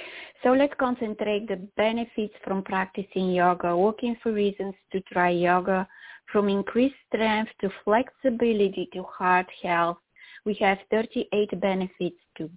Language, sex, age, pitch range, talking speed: English, female, 20-39, 180-215 Hz, 130 wpm